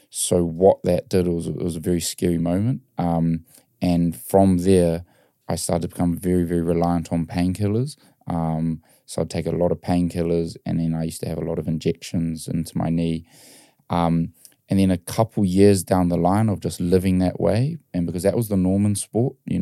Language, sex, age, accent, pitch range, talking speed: English, male, 20-39, Australian, 85-95 Hz, 205 wpm